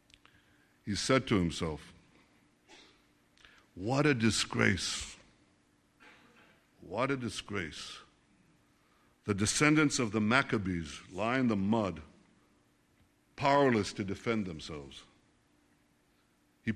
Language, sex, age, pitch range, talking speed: English, male, 60-79, 90-130 Hz, 85 wpm